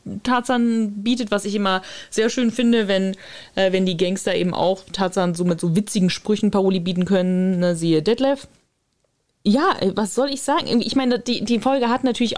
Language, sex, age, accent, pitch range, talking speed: German, female, 20-39, German, 190-230 Hz, 190 wpm